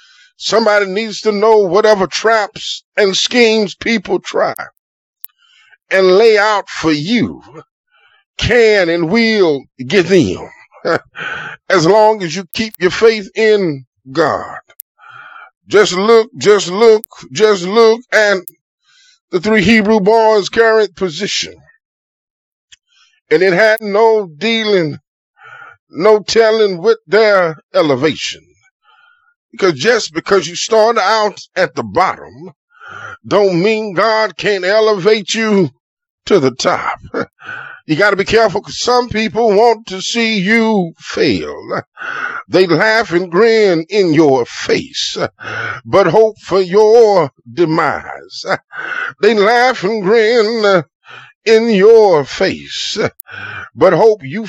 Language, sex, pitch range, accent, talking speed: English, male, 195-240 Hz, American, 115 wpm